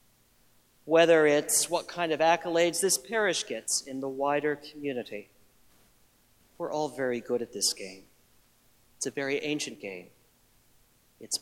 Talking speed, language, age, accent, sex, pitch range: 135 wpm, English, 40-59, American, male, 135-175 Hz